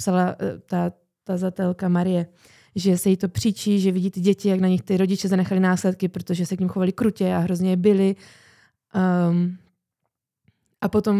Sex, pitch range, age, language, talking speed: female, 180-205 Hz, 20-39, Czech, 175 wpm